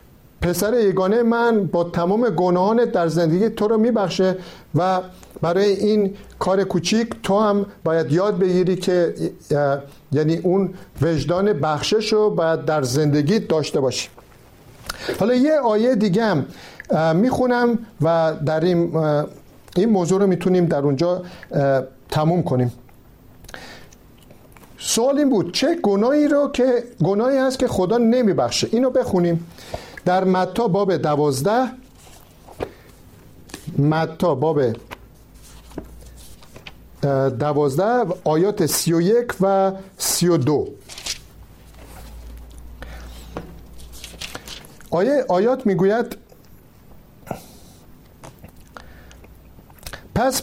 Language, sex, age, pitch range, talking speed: Persian, male, 50-69, 155-215 Hz, 95 wpm